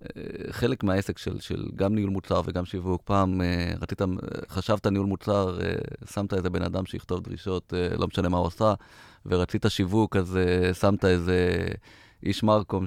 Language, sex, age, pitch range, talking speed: Hebrew, male, 30-49, 90-110 Hz, 150 wpm